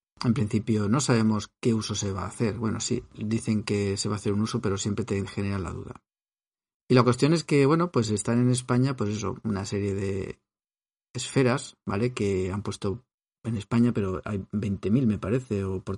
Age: 40-59